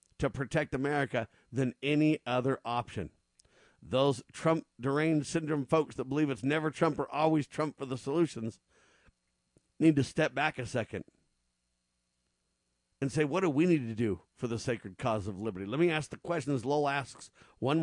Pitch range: 120-160 Hz